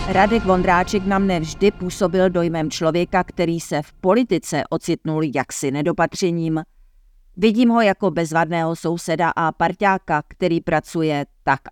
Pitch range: 150-180 Hz